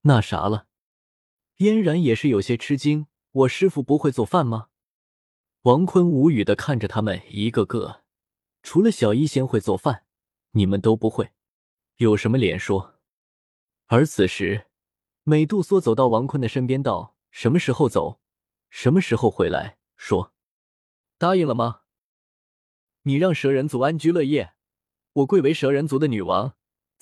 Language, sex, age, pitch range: Chinese, male, 20-39, 105-160 Hz